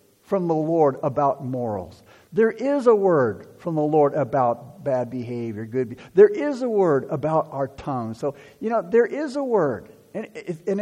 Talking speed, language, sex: 175 wpm, English, male